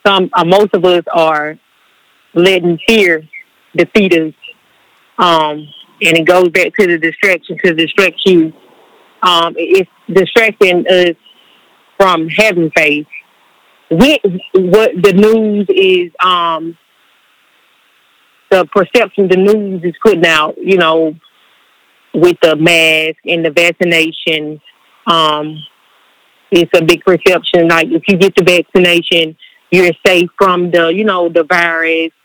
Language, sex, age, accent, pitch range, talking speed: English, female, 30-49, American, 170-200 Hz, 125 wpm